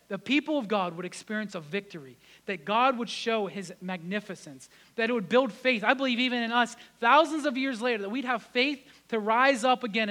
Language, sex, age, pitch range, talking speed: English, male, 30-49, 195-245 Hz, 215 wpm